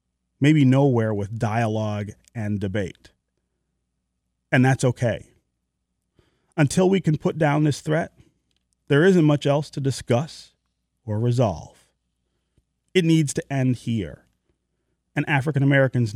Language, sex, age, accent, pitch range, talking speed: English, male, 30-49, American, 90-135 Hz, 120 wpm